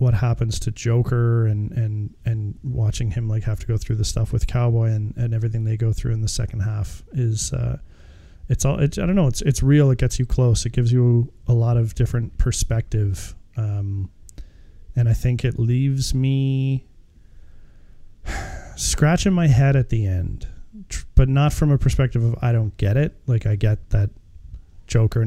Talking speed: 190 wpm